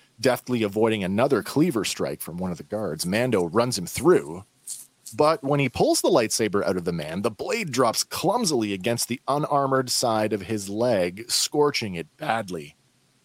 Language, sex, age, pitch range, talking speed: English, male, 40-59, 100-125 Hz, 170 wpm